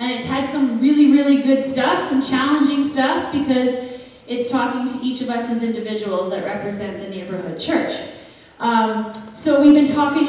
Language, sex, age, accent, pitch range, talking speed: English, female, 20-39, American, 230-275 Hz, 175 wpm